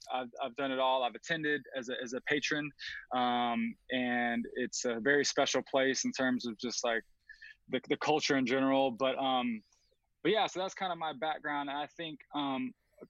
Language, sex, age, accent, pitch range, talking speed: English, male, 20-39, American, 130-160 Hz, 200 wpm